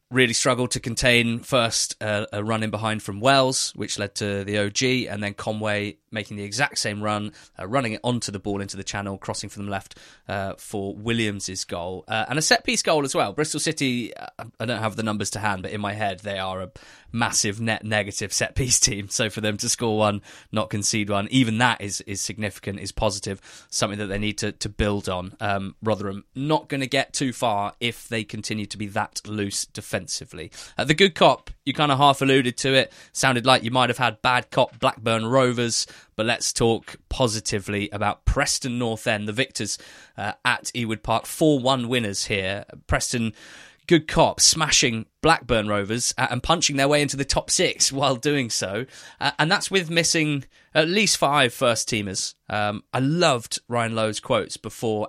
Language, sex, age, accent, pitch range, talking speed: English, male, 20-39, British, 105-130 Hz, 200 wpm